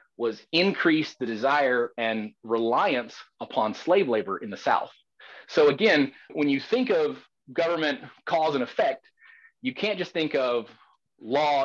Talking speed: 145 wpm